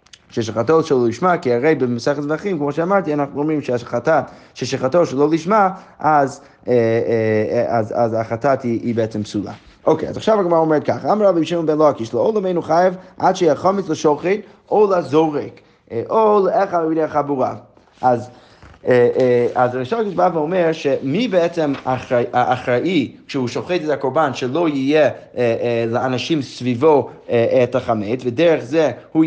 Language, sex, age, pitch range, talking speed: Hebrew, male, 30-49, 130-180 Hz, 150 wpm